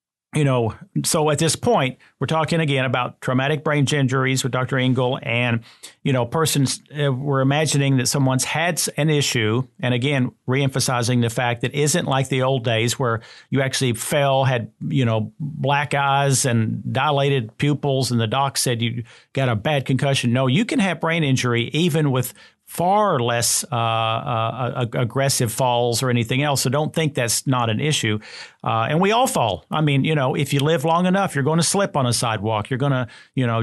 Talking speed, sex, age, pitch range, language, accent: 195 wpm, male, 50-69, 120-150 Hz, English, American